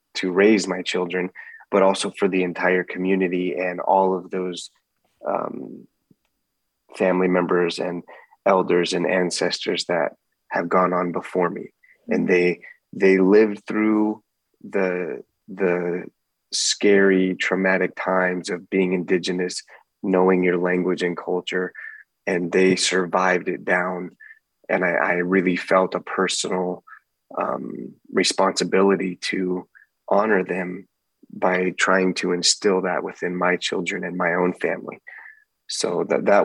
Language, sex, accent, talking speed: English, male, American, 125 wpm